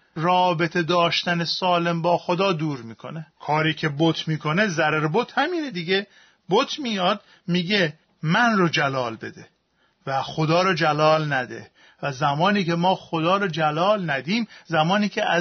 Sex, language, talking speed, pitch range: male, Persian, 145 wpm, 165-215 Hz